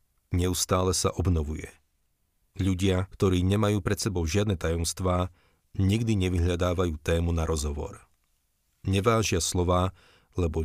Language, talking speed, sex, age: Slovak, 100 wpm, male, 40-59